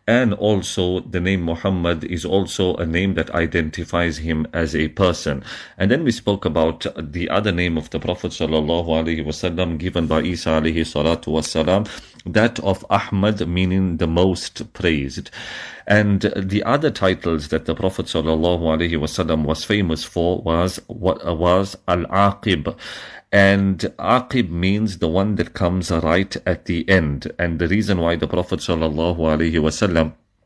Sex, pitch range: male, 80-100 Hz